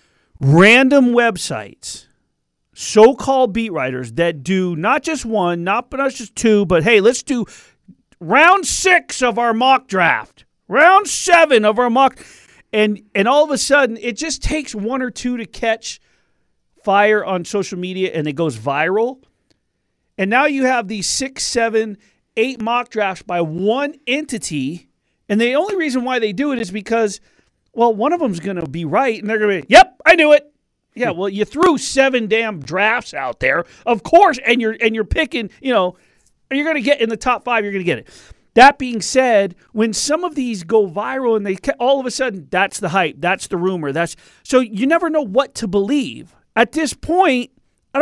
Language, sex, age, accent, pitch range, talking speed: English, male, 40-59, American, 200-270 Hz, 195 wpm